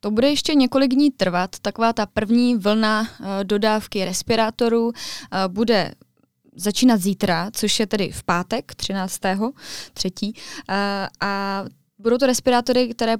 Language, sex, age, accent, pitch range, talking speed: Czech, female, 20-39, native, 190-220 Hz, 130 wpm